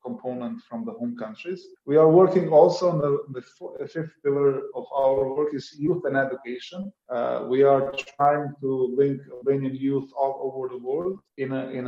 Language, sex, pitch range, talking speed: Turkish, male, 125-150 Hz, 185 wpm